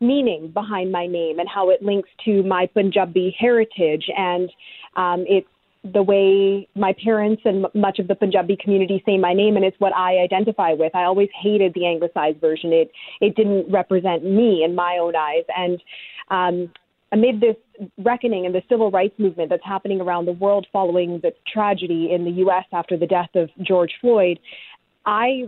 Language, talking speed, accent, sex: English, 185 wpm, American, female